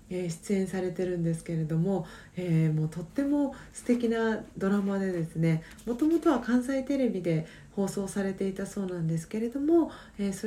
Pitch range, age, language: 170-225 Hz, 40-59, Japanese